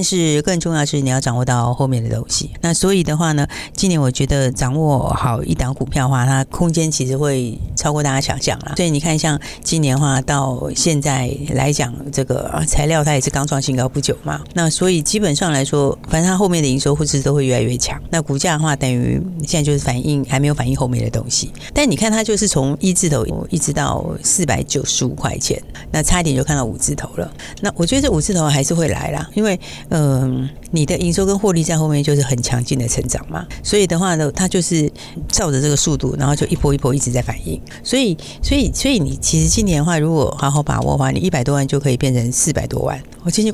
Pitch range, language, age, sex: 130-165 Hz, Chinese, 50-69, female